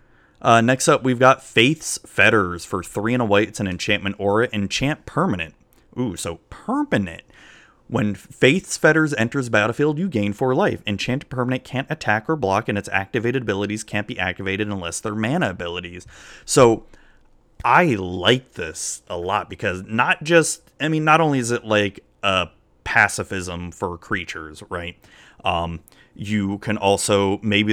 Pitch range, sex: 95-120 Hz, male